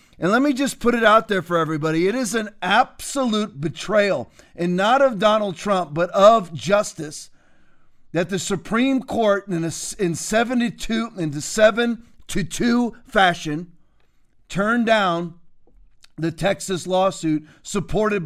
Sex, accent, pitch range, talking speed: male, American, 165-205 Hz, 140 wpm